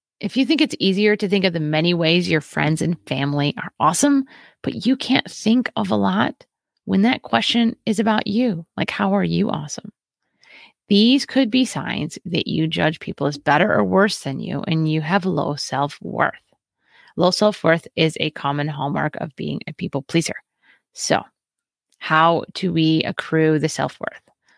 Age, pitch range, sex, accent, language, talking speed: 30-49, 155-225 Hz, female, American, English, 175 wpm